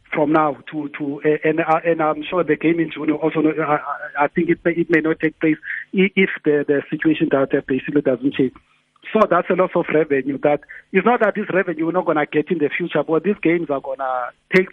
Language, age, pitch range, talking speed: English, 50-69, 150-175 Hz, 245 wpm